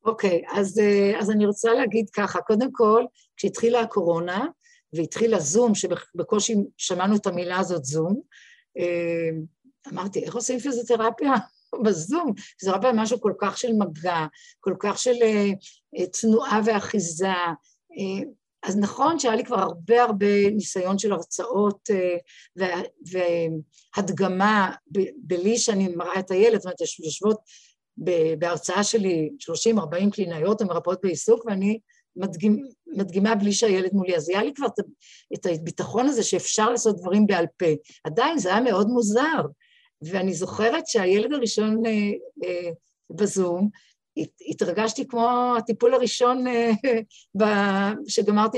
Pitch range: 185-230 Hz